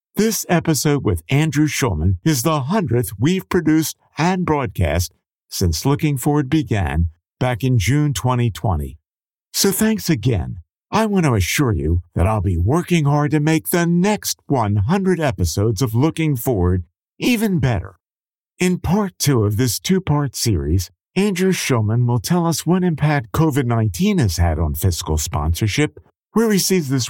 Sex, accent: male, American